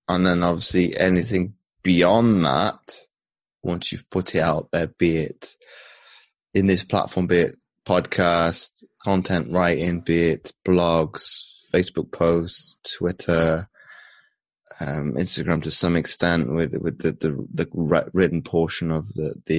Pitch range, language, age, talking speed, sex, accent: 85-95 Hz, English, 20-39, 130 wpm, male, British